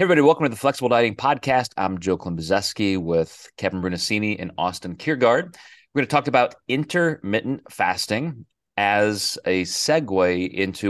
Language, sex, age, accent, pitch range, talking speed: English, male, 30-49, American, 90-115 Hz, 155 wpm